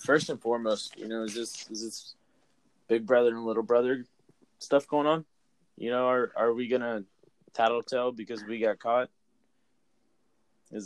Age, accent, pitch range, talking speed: 20-39, American, 110-135 Hz, 165 wpm